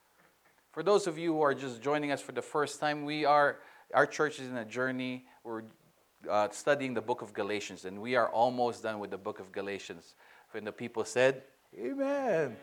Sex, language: male, English